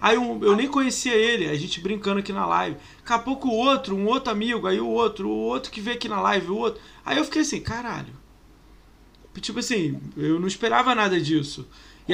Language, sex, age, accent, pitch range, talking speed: Portuguese, male, 20-39, Brazilian, 155-215 Hz, 225 wpm